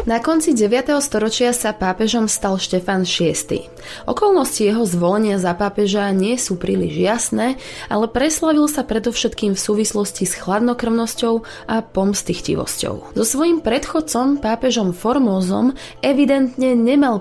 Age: 20-39